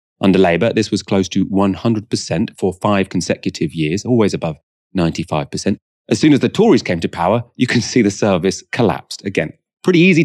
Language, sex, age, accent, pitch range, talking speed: English, male, 30-49, British, 90-120 Hz, 180 wpm